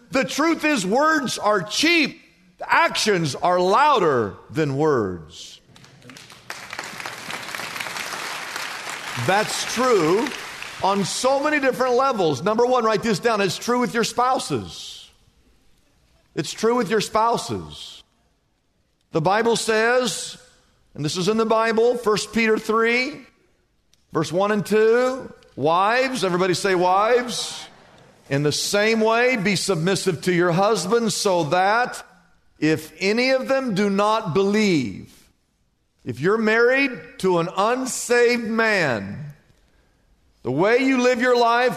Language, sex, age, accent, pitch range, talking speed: English, male, 50-69, American, 185-240 Hz, 120 wpm